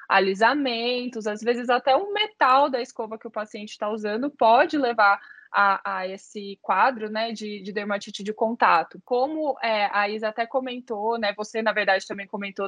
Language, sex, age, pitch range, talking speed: Portuguese, female, 20-39, 200-240 Hz, 180 wpm